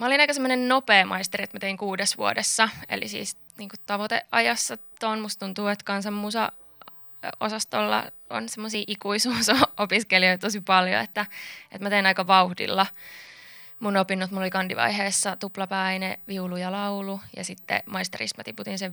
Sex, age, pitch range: female, 20-39, 185-210 Hz